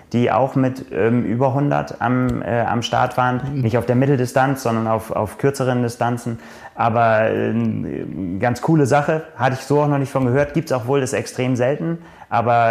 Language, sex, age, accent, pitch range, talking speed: German, male, 30-49, German, 115-130 Hz, 195 wpm